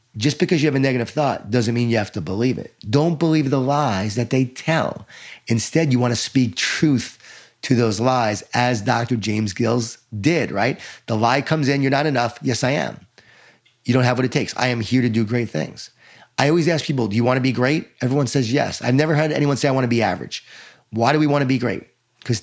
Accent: American